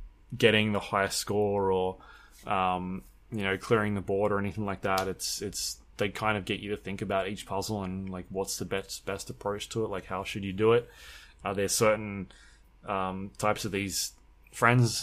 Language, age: English, 20-39